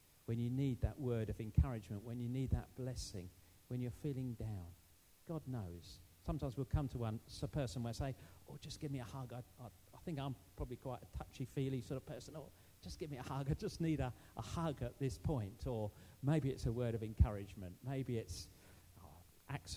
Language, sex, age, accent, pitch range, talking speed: English, male, 50-69, British, 95-130 Hz, 220 wpm